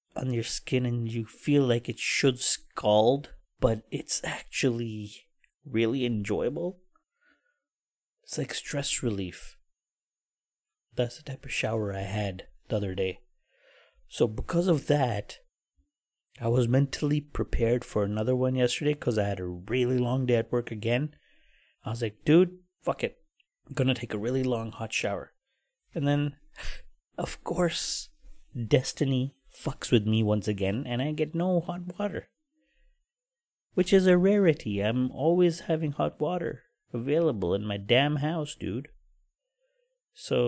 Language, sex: English, male